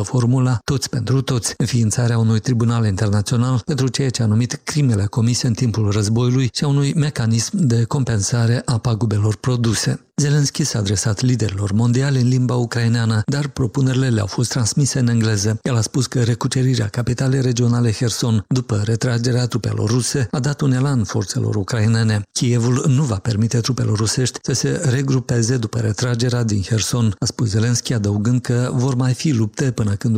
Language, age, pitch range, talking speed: Romanian, 50-69, 110-130 Hz, 165 wpm